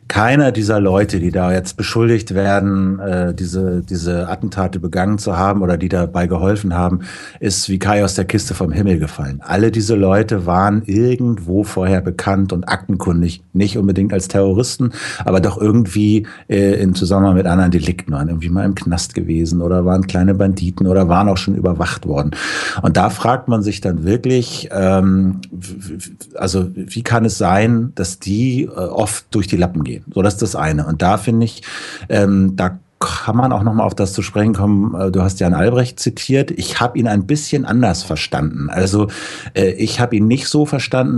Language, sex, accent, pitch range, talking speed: German, male, German, 90-110 Hz, 180 wpm